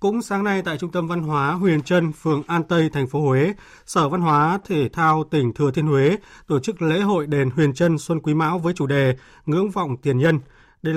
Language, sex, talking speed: Vietnamese, male, 235 wpm